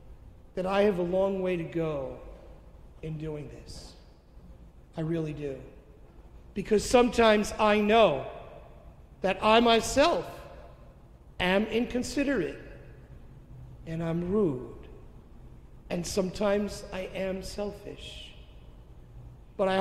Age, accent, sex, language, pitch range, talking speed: 50-69, American, male, English, 140-215 Hz, 100 wpm